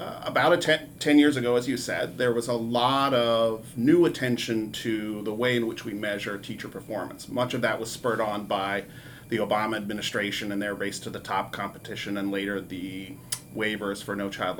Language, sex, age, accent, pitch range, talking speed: English, male, 40-59, American, 110-135 Hz, 195 wpm